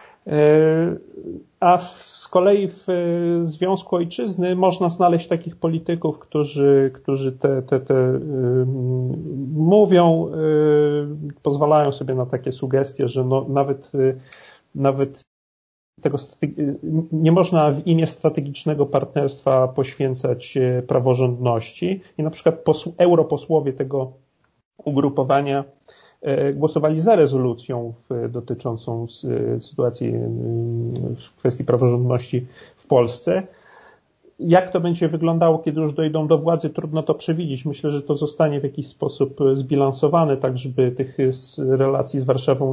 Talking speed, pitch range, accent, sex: 110 wpm, 130-160 Hz, native, male